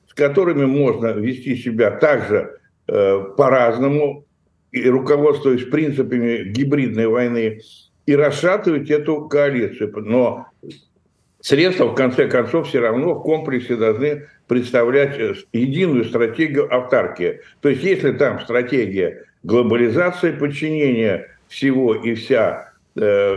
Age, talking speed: 60-79, 105 wpm